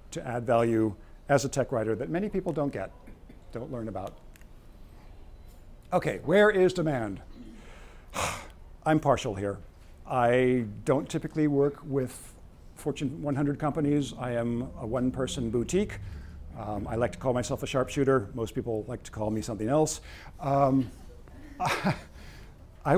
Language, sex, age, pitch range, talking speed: English, male, 50-69, 100-145 Hz, 135 wpm